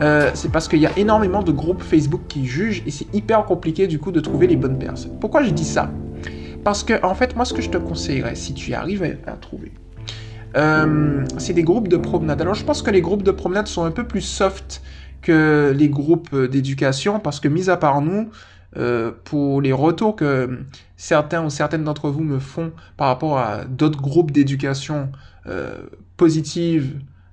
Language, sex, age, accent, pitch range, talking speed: French, male, 20-39, French, 135-175 Hz, 200 wpm